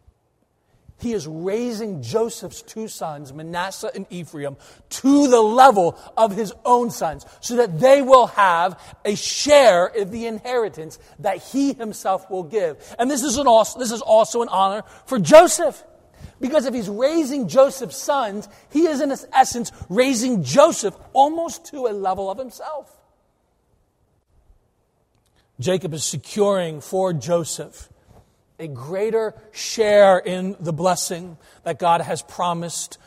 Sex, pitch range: male, 145-225 Hz